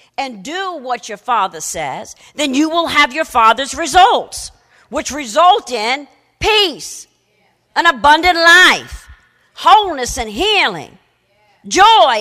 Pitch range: 300-410 Hz